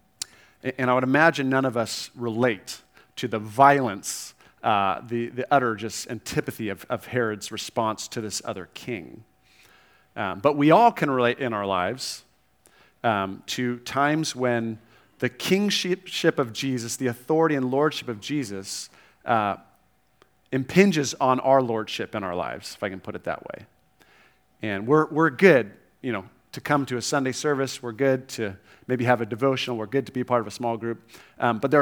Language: English